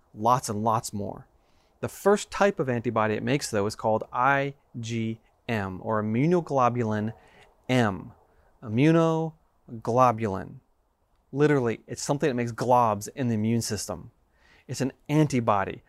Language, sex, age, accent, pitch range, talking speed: English, male, 30-49, American, 105-135 Hz, 120 wpm